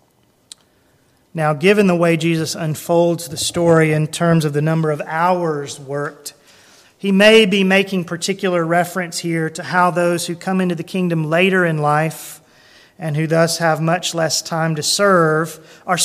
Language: English